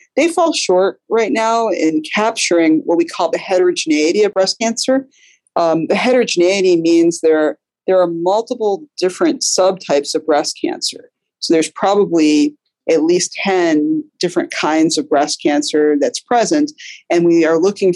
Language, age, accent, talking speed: English, 40-59, American, 150 wpm